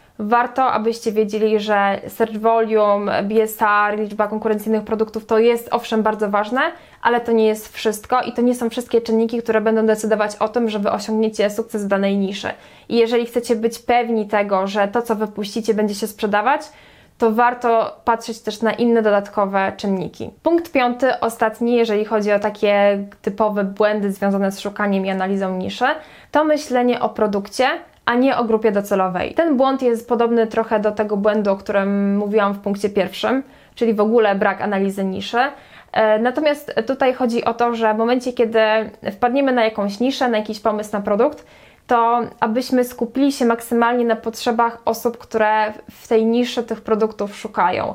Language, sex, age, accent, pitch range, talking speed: Polish, female, 20-39, native, 210-235 Hz, 170 wpm